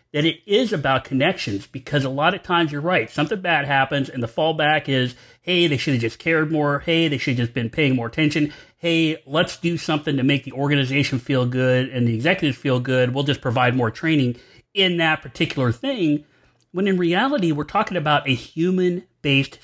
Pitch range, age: 125-160 Hz, 30-49